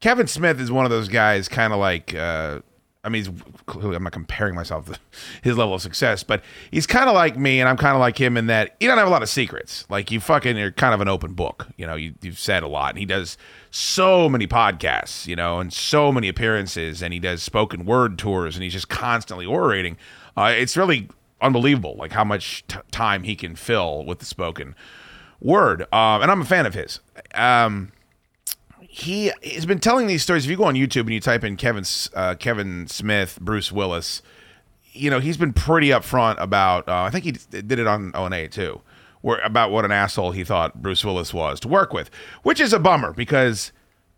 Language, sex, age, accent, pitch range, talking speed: English, male, 30-49, American, 95-125 Hz, 215 wpm